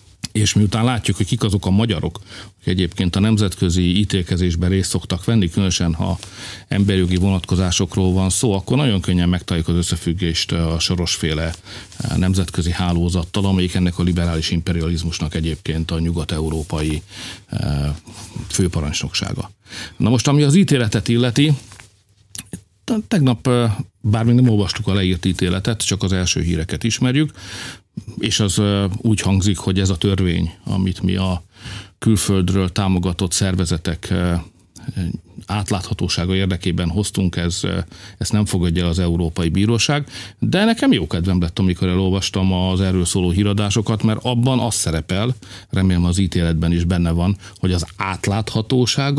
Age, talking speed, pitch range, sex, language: 50-69, 130 wpm, 90-110 Hz, male, Hungarian